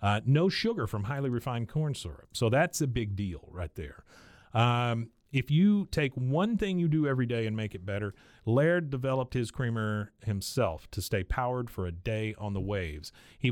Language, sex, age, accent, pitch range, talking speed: English, male, 40-59, American, 105-130 Hz, 195 wpm